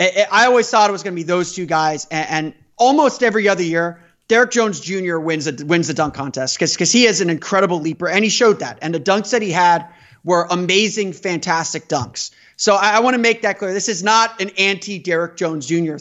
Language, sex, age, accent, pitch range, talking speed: English, male, 30-49, American, 170-215 Hz, 225 wpm